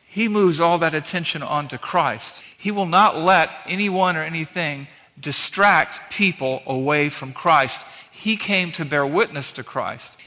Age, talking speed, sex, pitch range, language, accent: 50-69, 150 wpm, male, 145-180 Hz, English, American